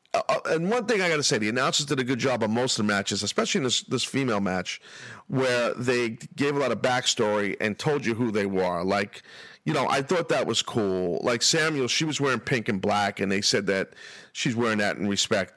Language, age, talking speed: English, 40-59, 245 wpm